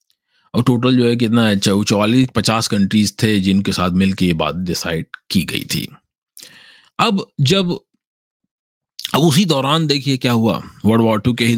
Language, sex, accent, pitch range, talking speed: English, male, Indian, 100-135 Hz, 155 wpm